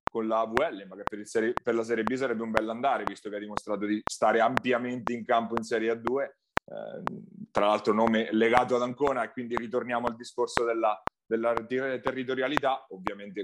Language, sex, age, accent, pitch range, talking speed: Italian, male, 30-49, native, 110-135 Hz, 195 wpm